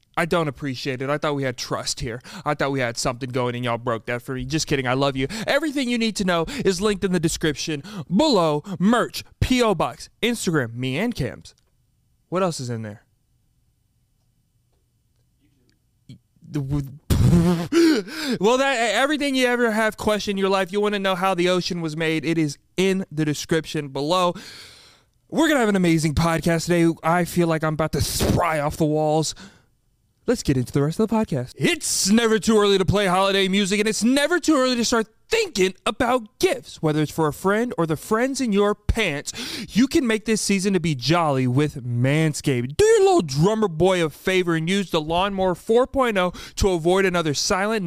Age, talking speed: 30-49, 195 wpm